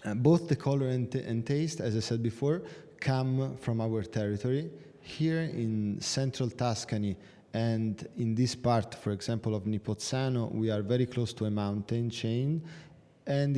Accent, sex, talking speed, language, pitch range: Italian, male, 160 wpm, English, 110-130 Hz